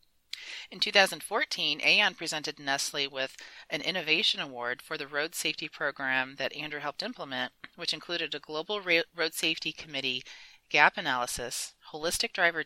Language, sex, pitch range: English, female, 140-175 Hz